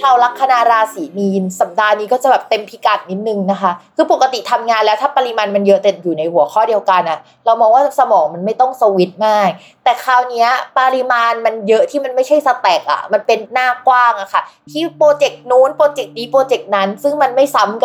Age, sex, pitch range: 20-39, female, 195-255 Hz